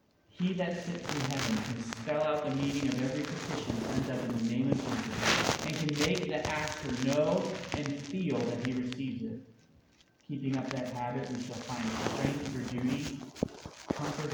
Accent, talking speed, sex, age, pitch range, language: American, 185 wpm, male, 40-59, 125-155 Hz, English